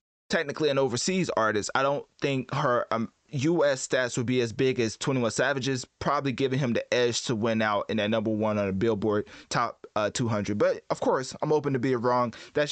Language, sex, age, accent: English, male, 20-39, American